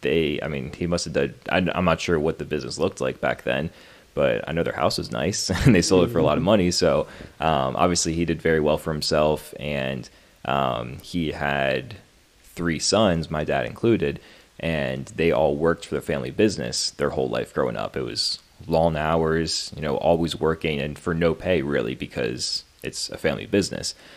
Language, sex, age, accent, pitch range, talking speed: English, male, 20-39, American, 75-85 Hz, 200 wpm